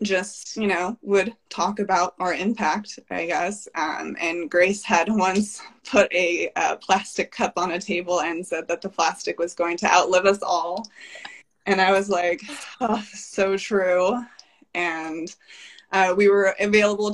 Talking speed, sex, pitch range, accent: 160 wpm, female, 170-200 Hz, American